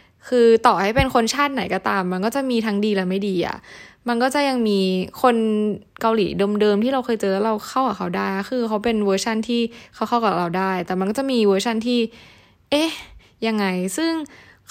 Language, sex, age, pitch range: Thai, female, 10-29, 195-255 Hz